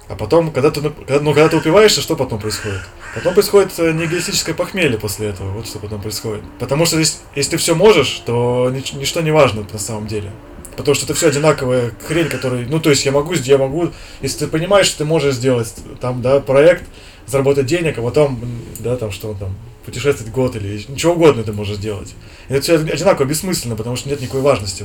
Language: Russian